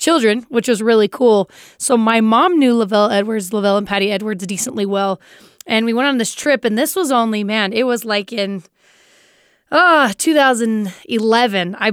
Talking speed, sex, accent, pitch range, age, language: 170 wpm, female, American, 210-270 Hz, 20-39, English